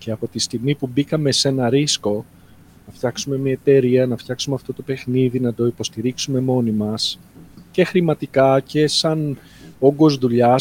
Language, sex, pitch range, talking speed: Greek, male, 120-150 Hz, 165 wpm